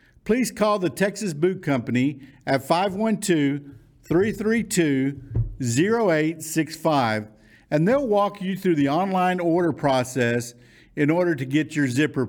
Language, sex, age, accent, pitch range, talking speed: English, male, 50-69, American, 120-155 Hz, 110 wpm